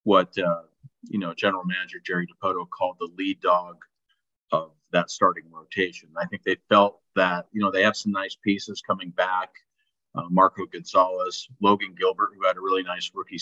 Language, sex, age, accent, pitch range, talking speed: English, male, 40-59, American, 90-115 Hz, 185 wpm